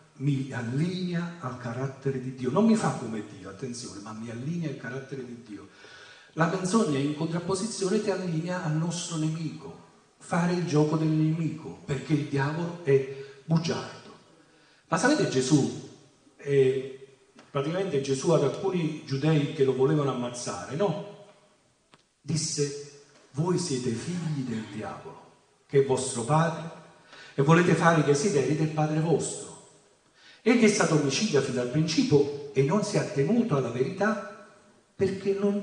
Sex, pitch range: male, 135-170 Hz